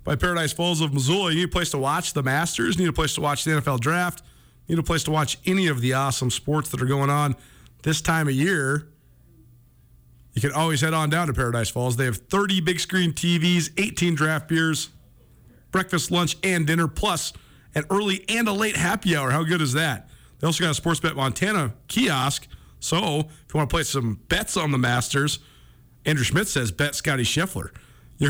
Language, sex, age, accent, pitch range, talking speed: English, male, 40-59, American, 125-170 Hz, 210 wpm